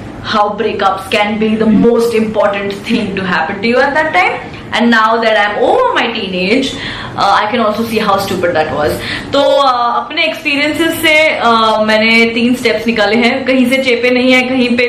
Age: 20-39